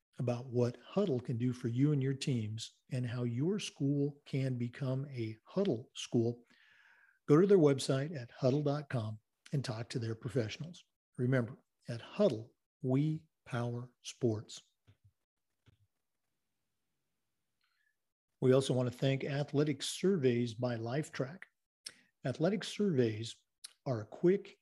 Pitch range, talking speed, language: 120-155 Hz, 120 wpm, English